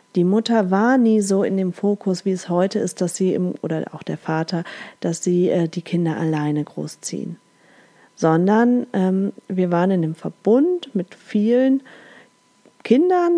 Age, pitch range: 40-59, 170-225 Hz